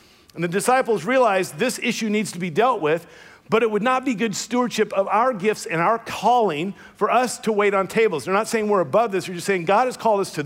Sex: male